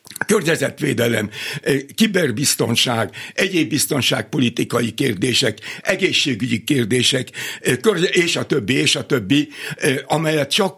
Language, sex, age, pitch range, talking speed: Hungarian, male, 60-79, 120-150 Hz, 90 wpm